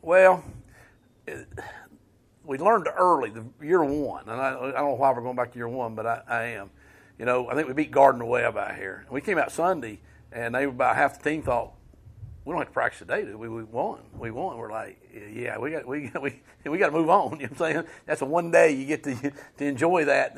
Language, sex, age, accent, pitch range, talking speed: English, male, 50-69, American, 120-150 Hz, 245 wpm